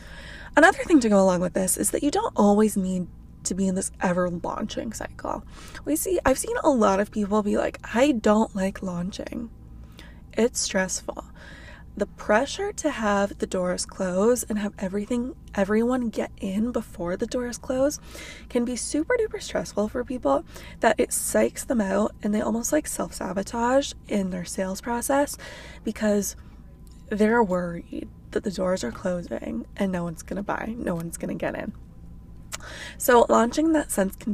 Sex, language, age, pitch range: female, English, 20-39, 190-250 Hz